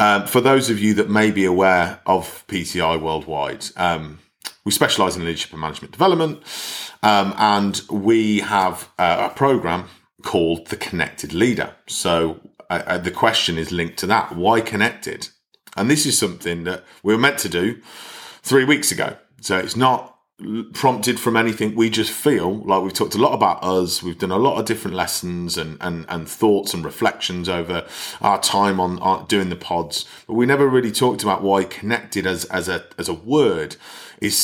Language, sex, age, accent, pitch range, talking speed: English, male, 30-49, British, 90-115 Hz, 185 wpm